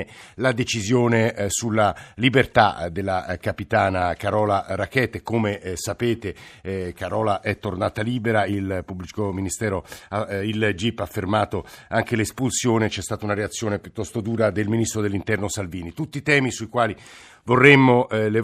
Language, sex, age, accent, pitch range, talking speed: Italian, male, 50-69, native, 95-115 Hz, 130 wpm